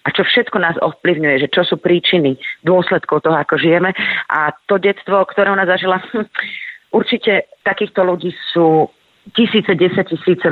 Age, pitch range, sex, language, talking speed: 30-49, 150-180 Hz, female, Slovak, 150 wpm